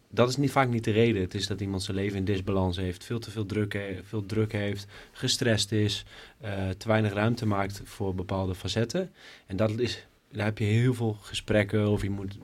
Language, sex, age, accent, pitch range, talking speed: Dutch, male, 20-39, Dutch, 100-115 Hz, 200 wpm